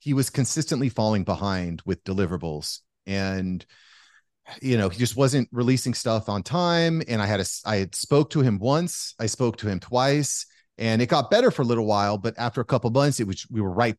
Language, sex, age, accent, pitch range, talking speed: English, male, 30-49, American, 105-140 Hz, 220 wpm